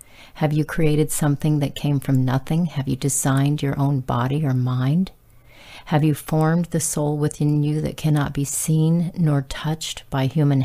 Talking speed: 175 wpm